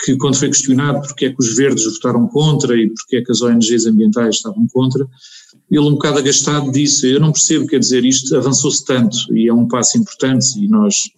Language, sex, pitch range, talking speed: Portuguese, male, 120-150 Hz, 220 wpm